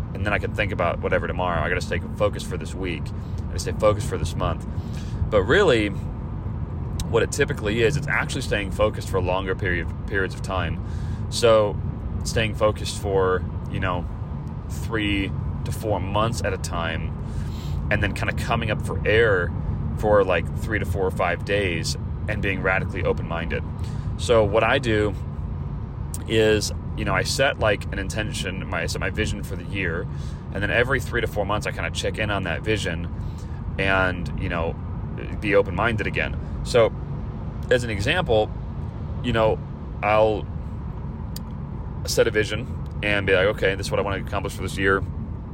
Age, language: 30-49, English